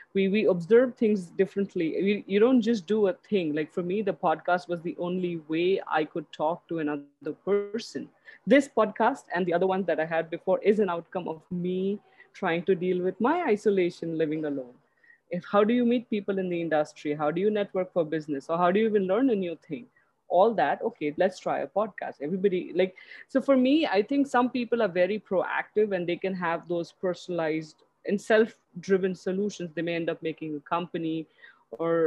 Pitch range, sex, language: 160-205 Hz, female, English